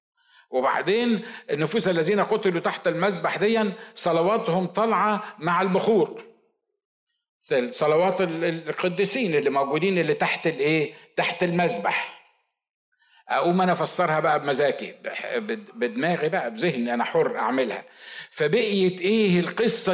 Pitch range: 170-245 Hz